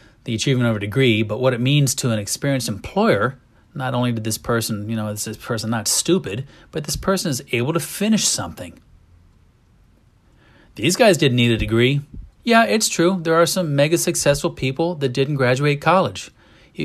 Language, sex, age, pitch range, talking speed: English, male, 30-49, 115-140 Hz, 190 wpm